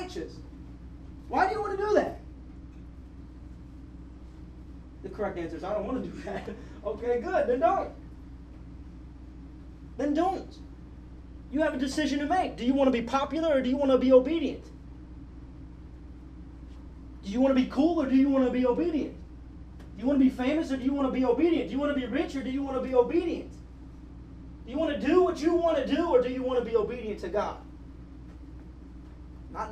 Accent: American